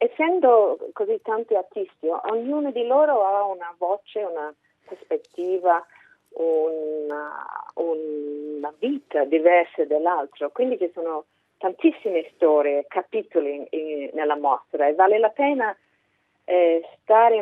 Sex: female